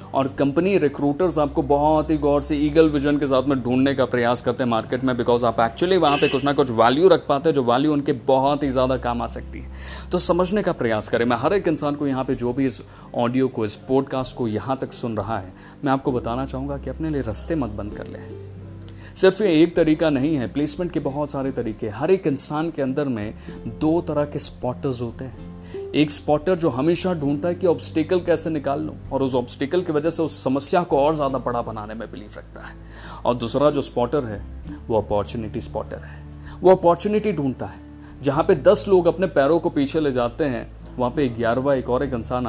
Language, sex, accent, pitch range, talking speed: Hindi, male, native, 110-150 Hz, 225 wpm